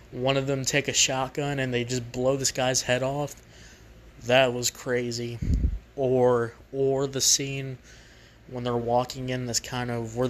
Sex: male